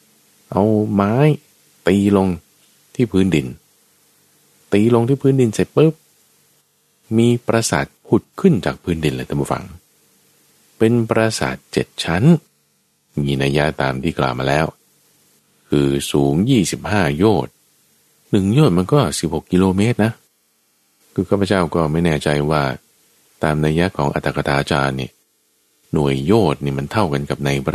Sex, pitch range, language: male, 70-105 Hz, Thai